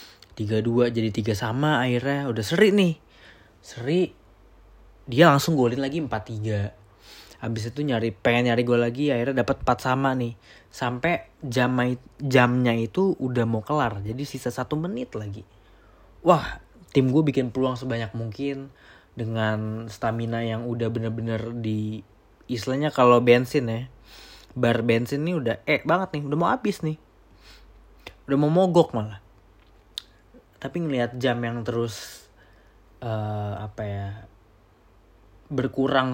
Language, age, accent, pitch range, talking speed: Indonesian, 20-39, native, 105-135 Hz, 135 wpm